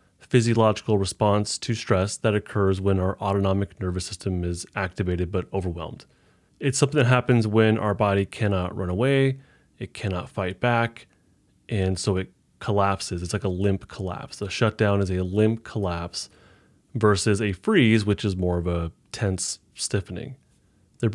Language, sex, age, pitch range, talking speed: English, male, 30-49, 95-115 Hz, 155 wpm